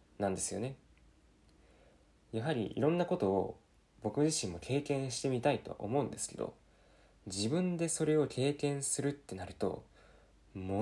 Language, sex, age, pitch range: Japanese, male, 20-39, 95-135 Hz